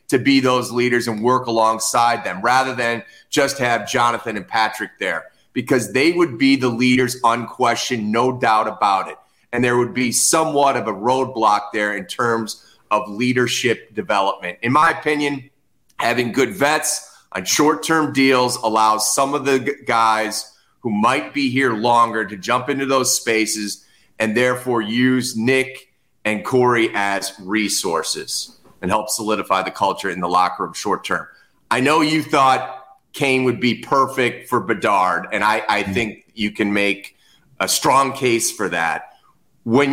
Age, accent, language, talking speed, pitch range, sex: 30-49, American, English, 160 wpm, 110-135 Hz, male